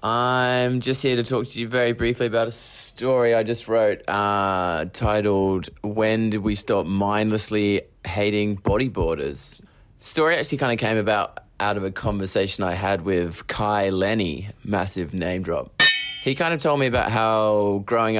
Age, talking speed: 20-39, 170 wpm